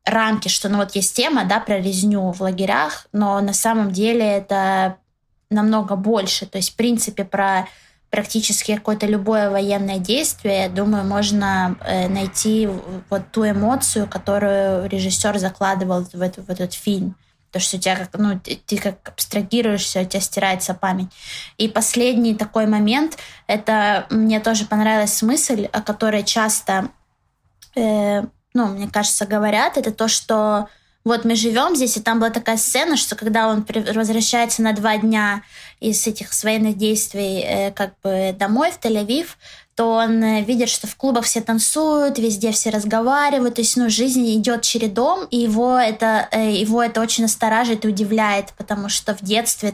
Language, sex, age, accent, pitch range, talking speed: Russian, female, 20-39, native, 200-225 Hz, 160 wpm